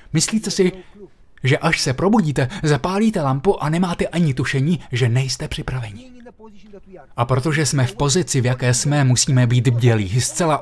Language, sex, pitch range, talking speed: Slovak, male, 125-170 Hz, 155 wpm